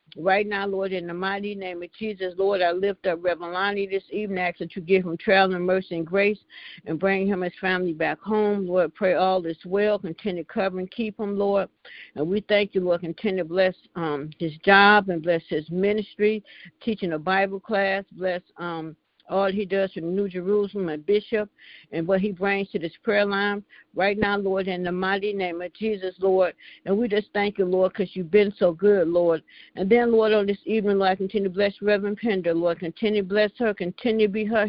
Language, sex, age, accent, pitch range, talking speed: English, female, 60-79, American, 180-205 Hz, 220 wpm